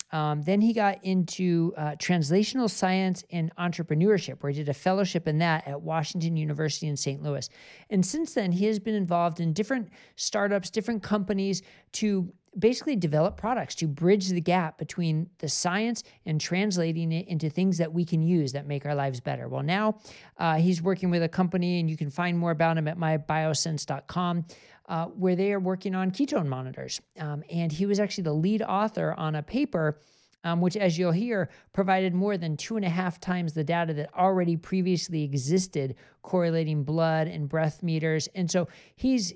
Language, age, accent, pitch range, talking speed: English, 40-59, American, 155-190 Hz, 190 wpm